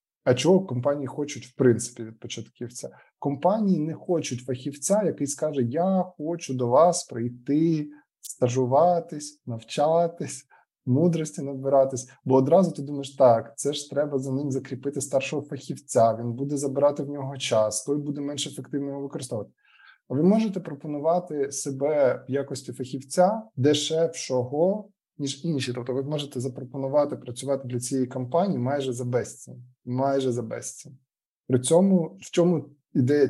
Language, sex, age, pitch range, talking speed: Ukrainian, male, 20-39, 125-150 Hz, 135 wpm